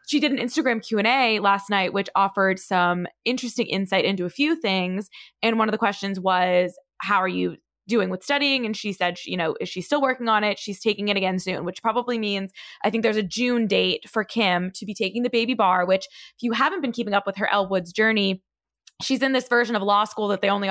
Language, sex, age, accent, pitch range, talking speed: English, female, 20-39, American, 190-235 Hz, 245 wpm